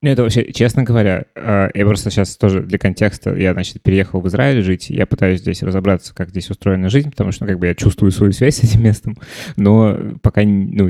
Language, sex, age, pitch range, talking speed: Russian, male, 20-39, 95-110 Hz, 220 wpm